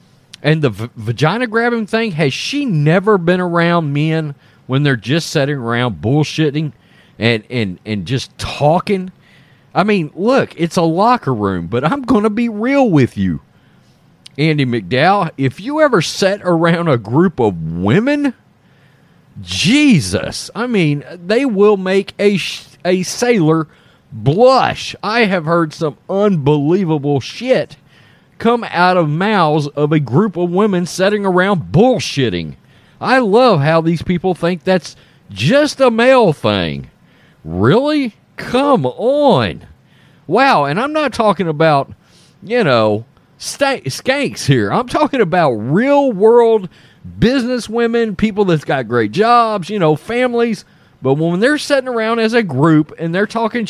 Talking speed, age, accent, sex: 140 wpm, 40-59, American, male